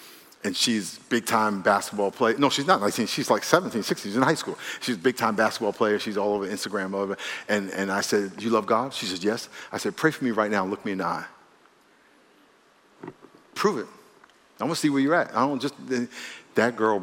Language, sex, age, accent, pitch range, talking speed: English, male, 50-69, American, 120-155 Hz, 230 wpm